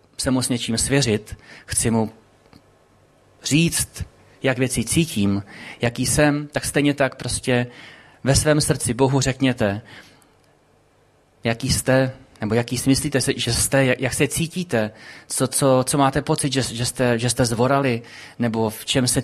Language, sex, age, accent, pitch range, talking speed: Czech, male, 30-49, native, 110-135 Hz, 150 wpm